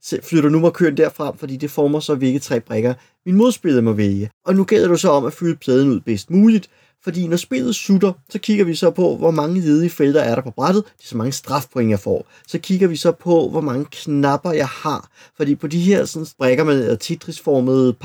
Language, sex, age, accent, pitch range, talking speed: Danish, male, 30-49, native, 130-170 Hz, 225 wpm